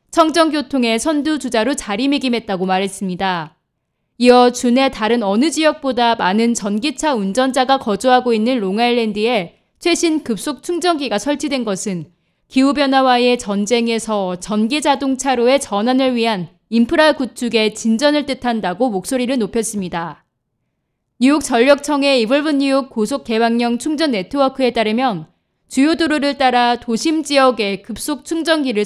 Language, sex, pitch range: Korean, female, 215-280 Hz